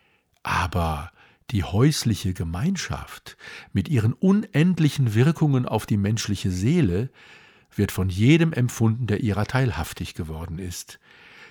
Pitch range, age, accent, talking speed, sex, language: 95-130 Hz, 50-69, German, 110 wpm, male, German